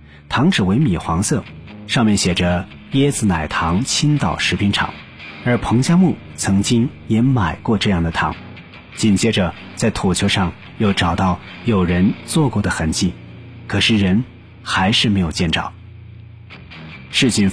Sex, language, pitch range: male, Chinese, 85-115 Hz